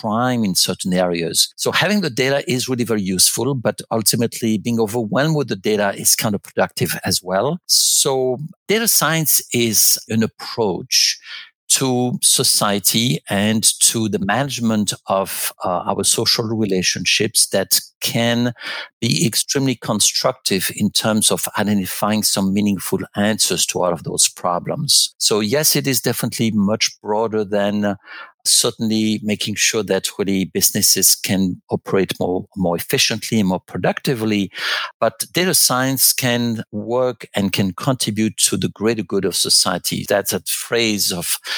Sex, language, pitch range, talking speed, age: male, English, 100-125 Hz, 145 wpm, 50-69